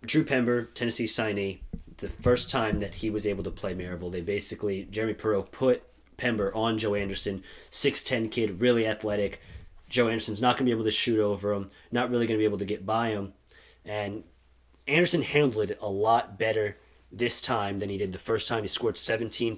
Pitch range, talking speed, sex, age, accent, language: 90-115 Hz, 200 wpm, male, 30-49, American, English